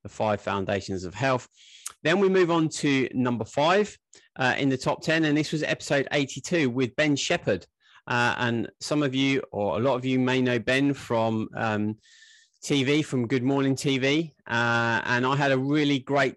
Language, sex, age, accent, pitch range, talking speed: English, male, 30-49, British, 115-140 Hz, 185 wpm